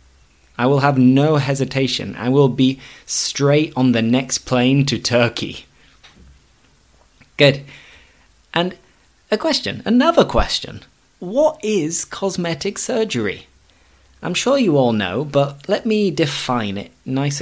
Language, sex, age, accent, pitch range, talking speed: English, male, 20-39, British, 110-135 Hz, 125 wpm